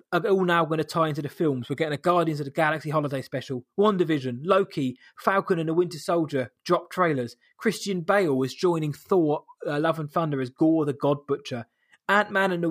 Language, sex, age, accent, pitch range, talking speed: English, male, 20-39, British, 145-195 Hz, 210 wpm